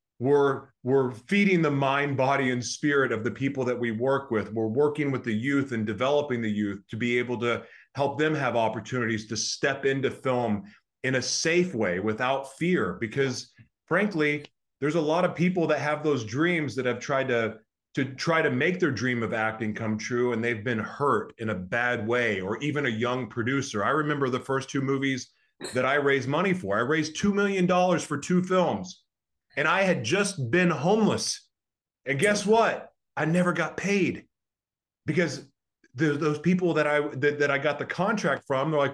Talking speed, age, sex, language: 195 wpm, 30-49, male, English